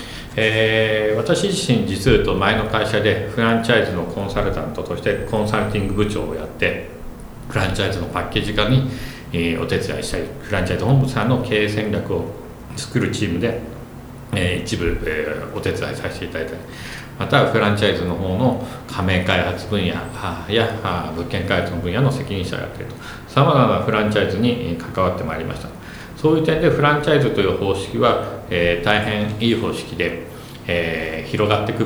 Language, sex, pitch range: Japanese, male, 90-125 Hz